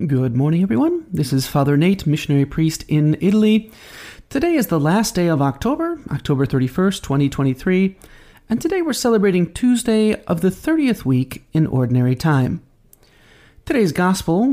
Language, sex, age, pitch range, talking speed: English, male, 40-59, 140-230 Hz, 145 wpm